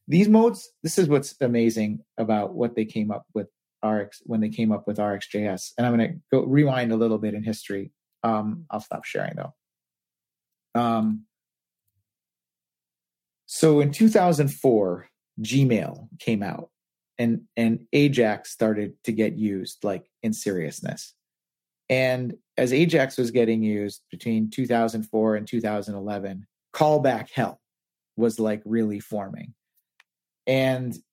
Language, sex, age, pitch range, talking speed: English, male, 30-49, 105-135 Hz, 135 wpm